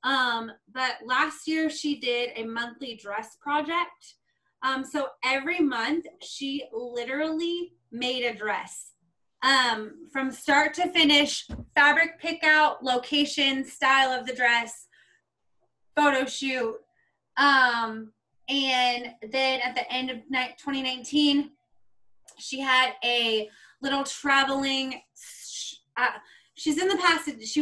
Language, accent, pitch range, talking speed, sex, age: English, American, 230-280 Hz, 115 wpm, female, 20-39